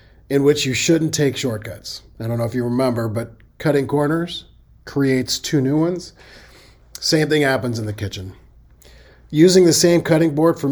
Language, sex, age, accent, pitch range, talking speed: English, male, 40-59, American, 115-150 Hz, 175 wpm